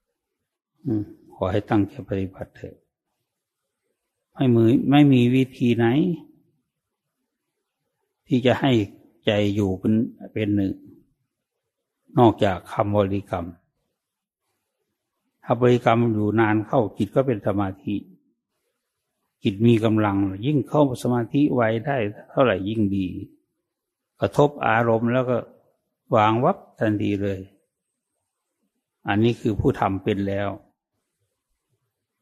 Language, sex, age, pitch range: English, male, 60-79, 100-120 Hz